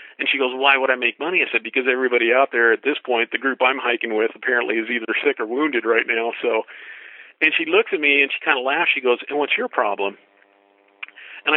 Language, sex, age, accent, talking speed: English, male, 50-69, American, 250 wpm